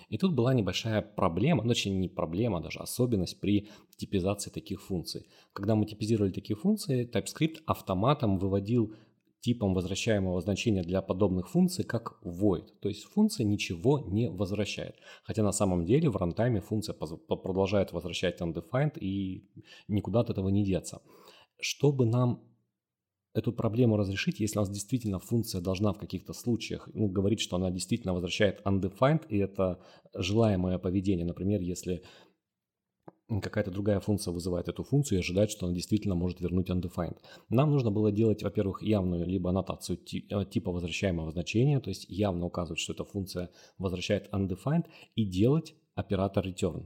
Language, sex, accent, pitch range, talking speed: Russian, male, native, 90-110 Hz, 150 wpm